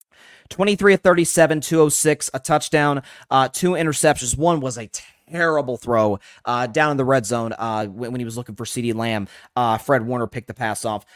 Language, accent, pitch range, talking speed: English, American, 115-175 Hz, 195 wpm